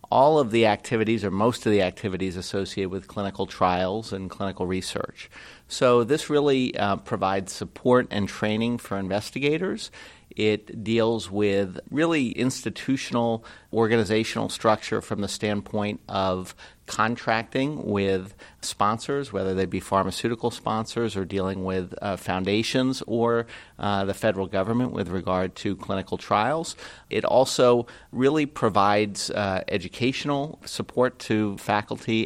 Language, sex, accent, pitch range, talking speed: English, male, American, 95-115 Hz, 130 wpm